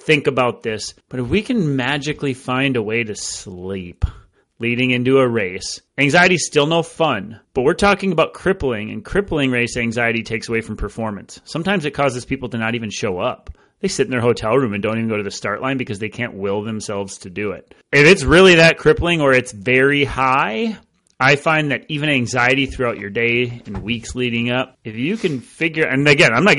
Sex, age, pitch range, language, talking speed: male, 30-49, 115-155 Hz, English, 215 wpm